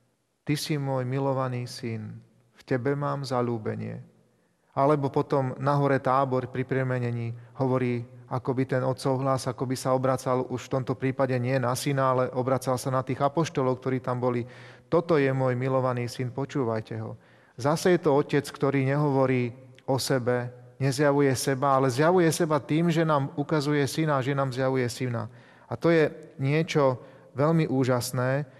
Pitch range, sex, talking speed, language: 130-150 Hz, male, 155 wpm, Slovak